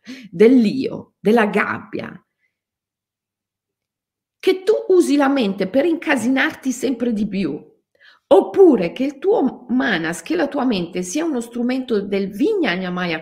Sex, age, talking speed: female, 50-69, 125 wpm